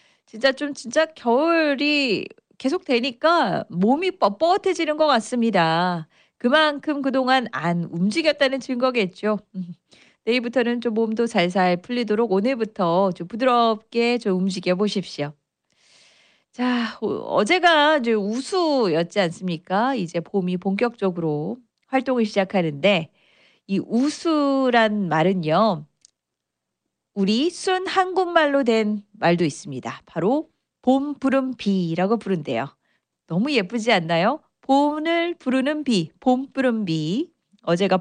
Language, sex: Korean, female